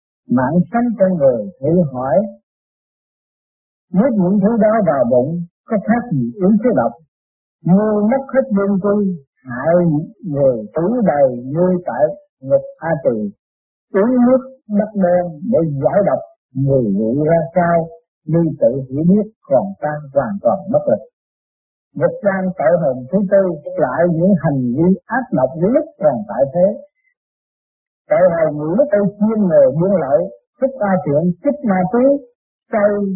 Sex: male